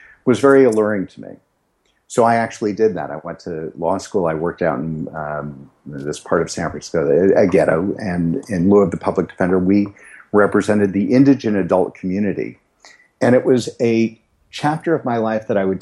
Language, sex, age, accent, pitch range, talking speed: English, male, 50-69, American, 90-110 Hz, 195 wpm